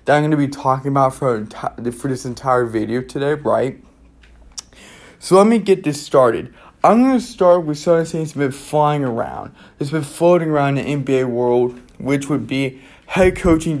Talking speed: 185 wpm